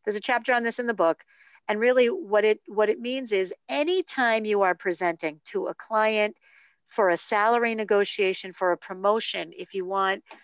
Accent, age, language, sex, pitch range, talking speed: American, 50-69, English, female, 175-220 Hz, 190 wpm